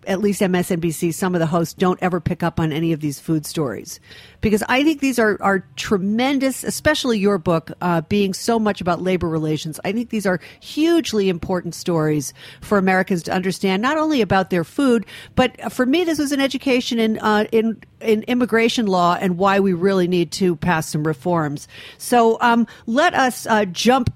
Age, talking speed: 50-69, 195 wpm